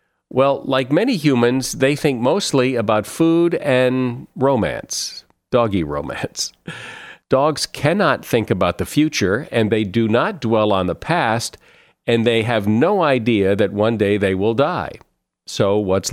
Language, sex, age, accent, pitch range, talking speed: English, male, 50-69, American, 100-130 Hz, 150 wpm